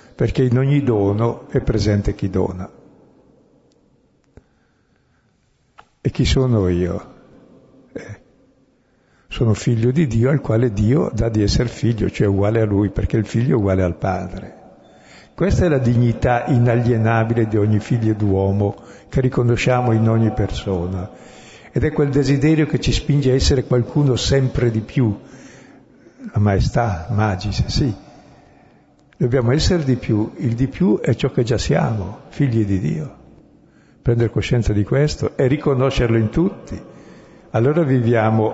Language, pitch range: Italian, 105-125 Hz